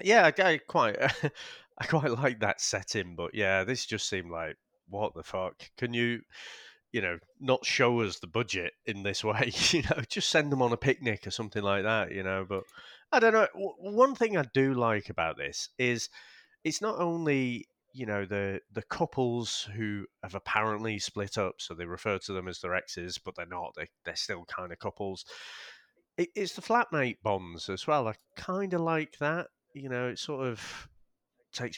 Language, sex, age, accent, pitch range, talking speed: English, male, 30-49, British, 100-130 Hz, 195 wpm